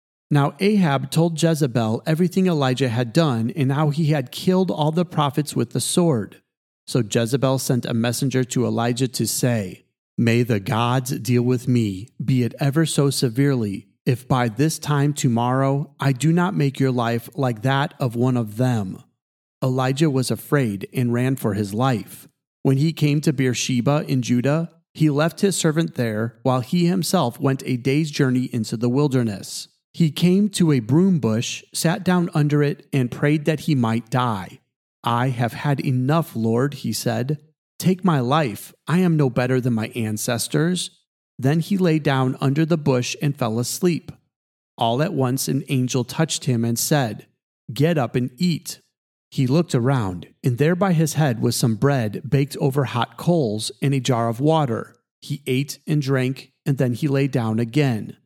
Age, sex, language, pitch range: 40-59, male, English, 125-155 Hz